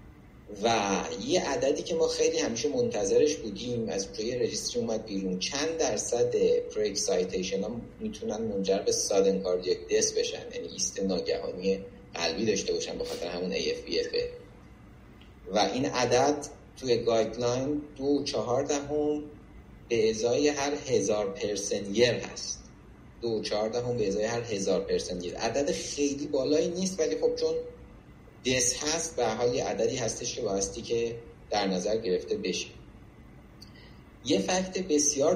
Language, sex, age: Persian, male, 30-49